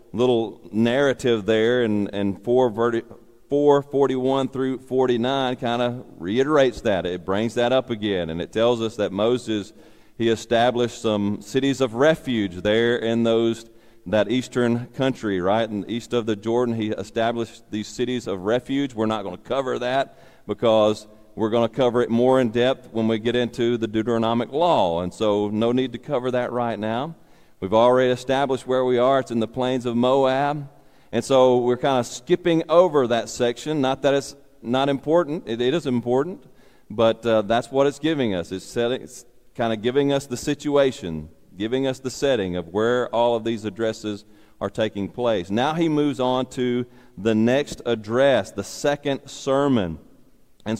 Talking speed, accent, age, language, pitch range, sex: 175 wpm, American, 40-59, English, 110-130 Hz, male